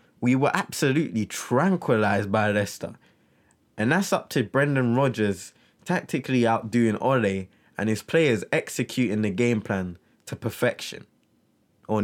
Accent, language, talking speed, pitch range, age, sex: British, English, 125 wpm, 110-170 Hz, 20-39, male